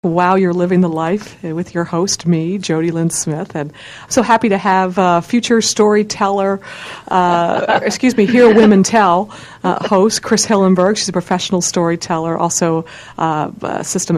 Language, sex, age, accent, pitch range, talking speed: English, female, 50-69, American, 160-195 Hz, 165 wpm